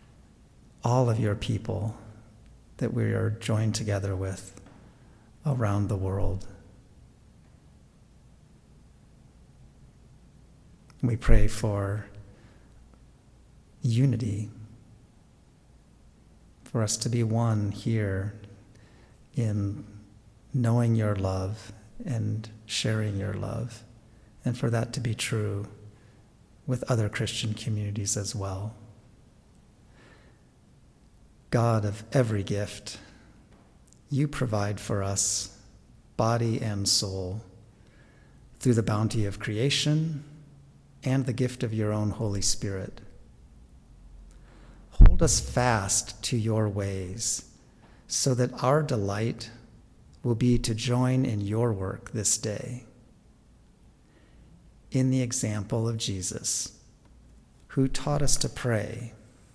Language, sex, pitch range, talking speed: English, male, 105-120 Hz, 95 wpm